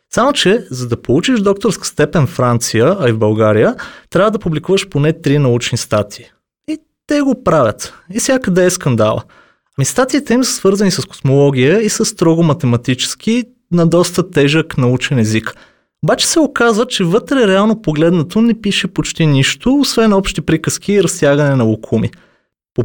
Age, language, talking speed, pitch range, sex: 30-49, Bulgarian, 170 wpm, 130-210 Hz, male